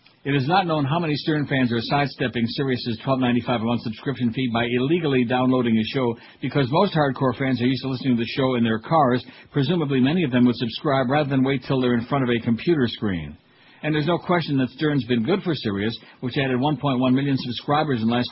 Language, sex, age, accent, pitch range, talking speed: English, male, 60-79, American, 120-145 Hz, 230 wpm